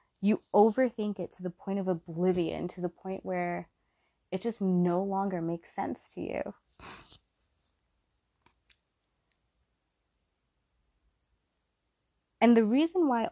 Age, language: 20-39, English